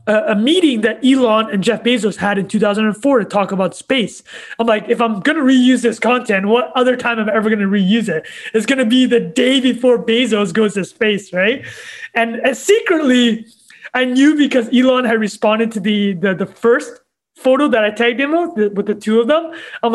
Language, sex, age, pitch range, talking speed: English, male, 20-39, 210-255 Hz, 215 wpm